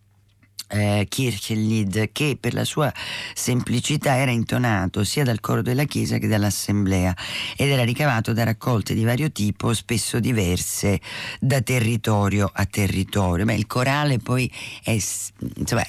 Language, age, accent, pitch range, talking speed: Italian, 40-59, native, 95-125 Hz, 135 wpm